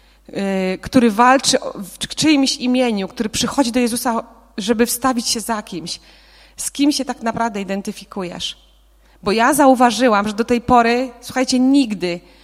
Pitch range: 215-255 Hz